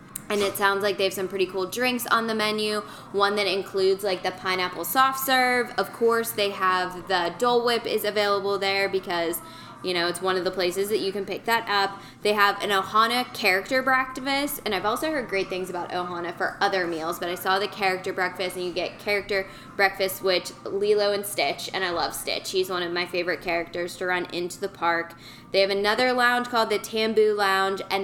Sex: female